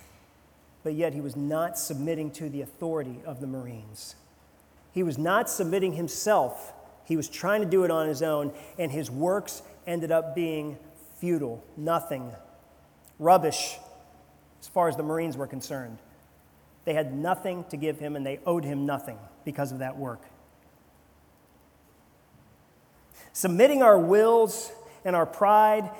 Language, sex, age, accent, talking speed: English, male, 40-59, American, 145 wpm